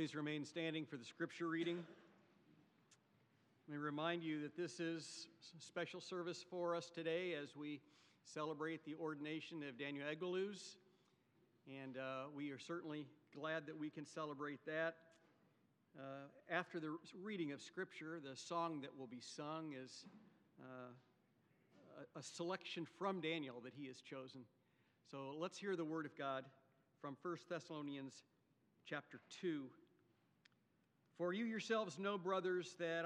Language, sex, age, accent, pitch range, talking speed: English, male, 50-69, American, 150-190 Hz, 140 wpm